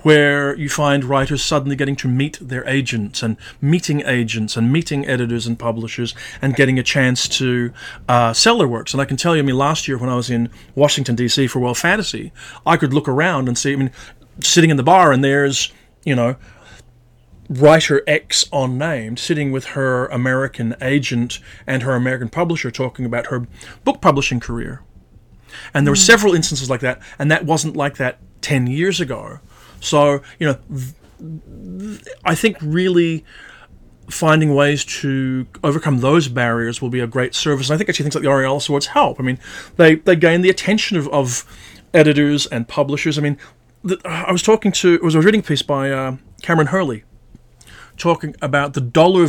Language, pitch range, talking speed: English, 125-155 Hz, 185 wpm